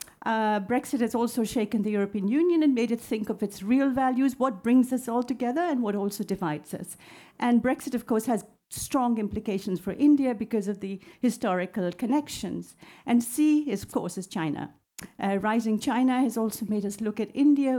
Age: 50-69